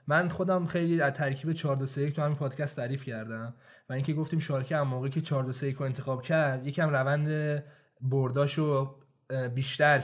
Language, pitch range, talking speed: Persian, 140-185 Hz, 160 wpm